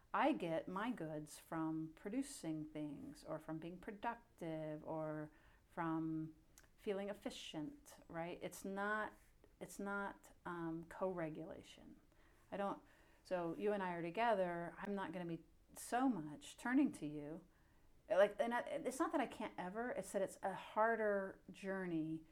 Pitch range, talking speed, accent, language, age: 170-260 Hz, 150 wpm, American, English, 40-59